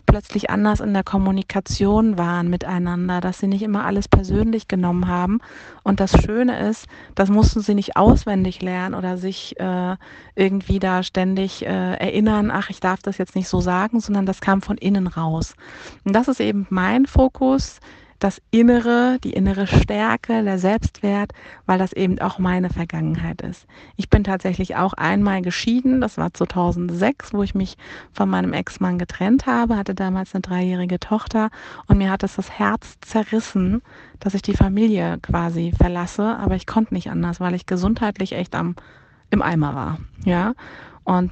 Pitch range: 180-210 Hz